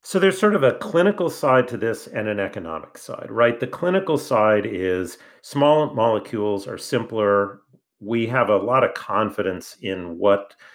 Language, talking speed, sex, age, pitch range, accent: English, 165 wpm, male, 40-59, 100-145 Hz, American